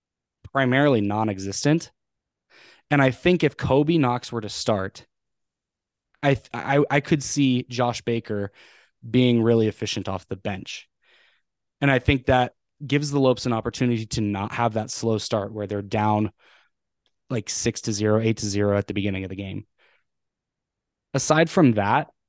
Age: 20-39